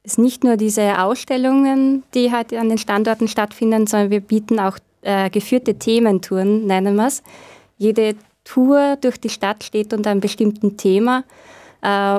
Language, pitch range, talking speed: German, 205-235 Hz, 160 wpm